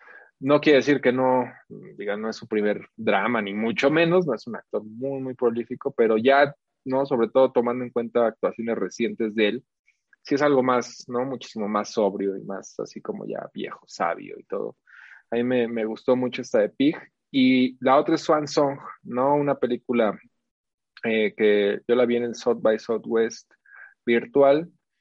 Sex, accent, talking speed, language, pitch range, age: male, Mexican, 190 wpm, Spanish, 110-130 Hz, 20-39